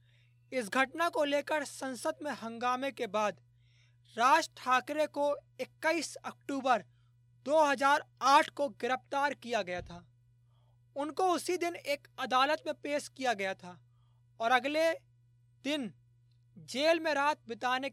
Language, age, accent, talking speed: Hindi, 20-39, native, 125 wpm